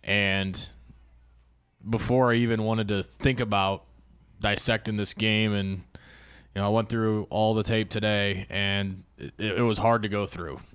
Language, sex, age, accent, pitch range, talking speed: English, male, 20-39, American, 95-110 Hz, 160 wpm